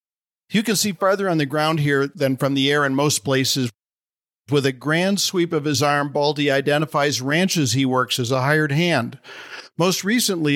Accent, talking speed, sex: American, 190 wpm, male